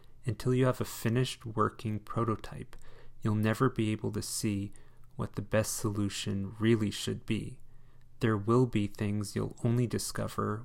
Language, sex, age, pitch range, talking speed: English, male, 30-49, 110-125 Hz, 150 wpm